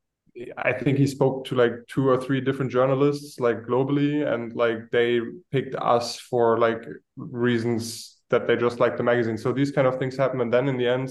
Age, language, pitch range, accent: 20-39, English, 115-125 Hz, German